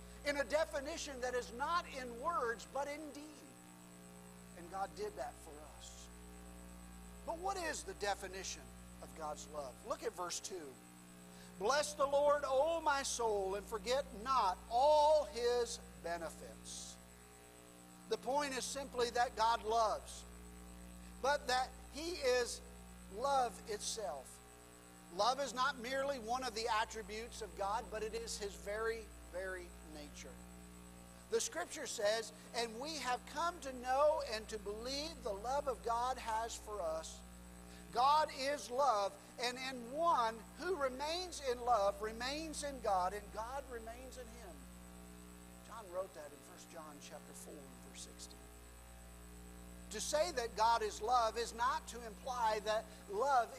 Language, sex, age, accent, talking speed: English, male, 50-69, American, 145 wpm